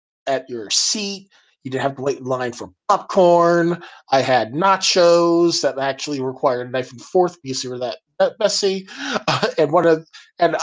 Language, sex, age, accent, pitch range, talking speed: English, male, 20-39, American, 135-180 Hz, 185 wpm